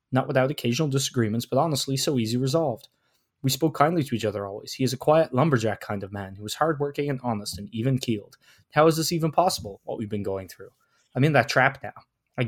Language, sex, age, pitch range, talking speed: English, male, 20-39, 105-135 Hz, 230 wpm